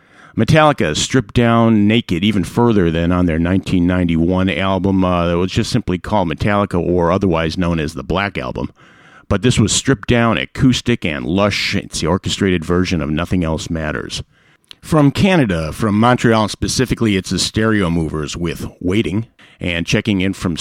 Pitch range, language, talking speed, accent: 90-110 Hz, English, 165 wpm, American